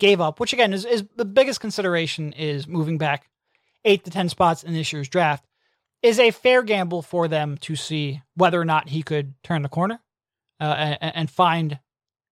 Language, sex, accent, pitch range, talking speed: English, male, American, 155-195 Hz, 195 wpm